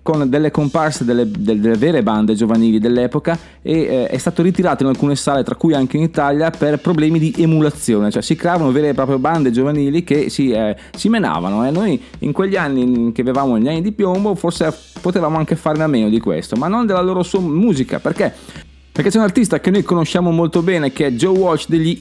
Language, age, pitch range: Italian, 30-49, 120-170 Hz